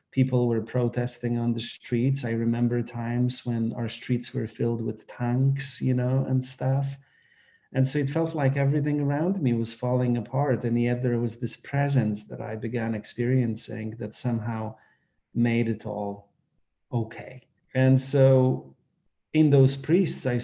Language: English